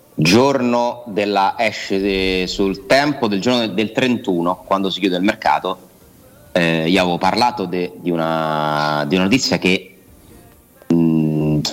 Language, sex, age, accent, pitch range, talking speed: Italian, male, 30-49, native, 85-115 Hz, 135 wpm